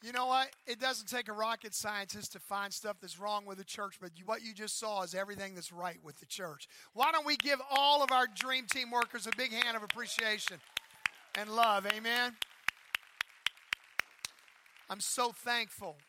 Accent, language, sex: American, English, male